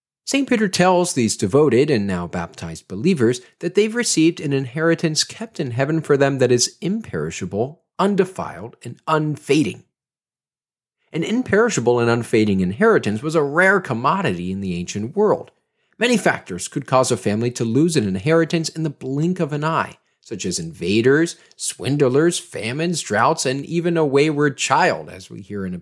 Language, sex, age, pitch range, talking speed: English, male, 40-59, 115-180 Hz, 165 wpm